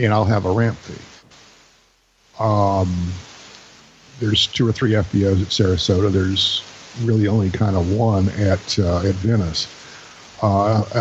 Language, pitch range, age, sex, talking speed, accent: English, 95-110 Hz, 50-69, male, 130 wpm, American